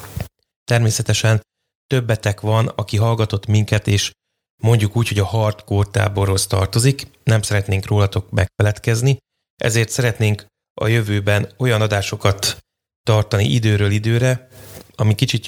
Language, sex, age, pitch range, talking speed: Hungarian, male, 30-49, 100-120 Hz, 110 wpm